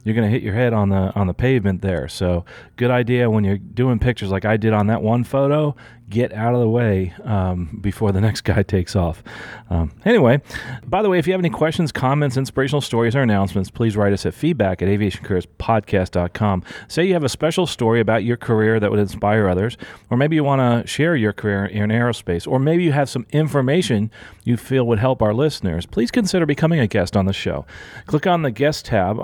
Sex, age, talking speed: male, 40-59, 220 wpm